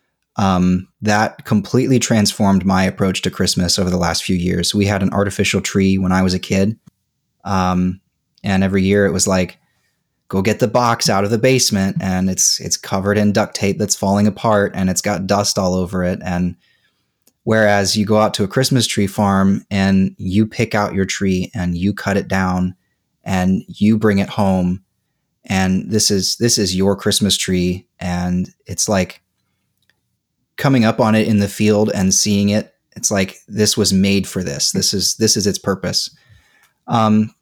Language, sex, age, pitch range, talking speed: English, male, 20-39, 95-105 Hz, 185 wpm